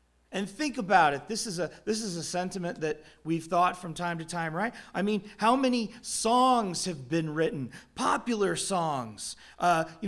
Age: 30-49